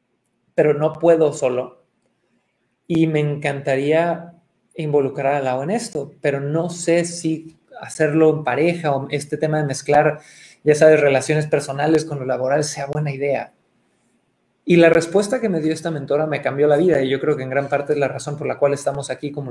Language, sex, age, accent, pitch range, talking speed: Spanish, male, 30-49, Mexican, 145-175 Hz, 190 wpm